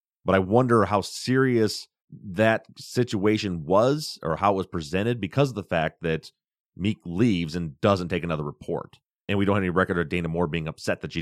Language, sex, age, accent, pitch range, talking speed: English, male, 30-49, American, 85-110 Hz, 205 wpm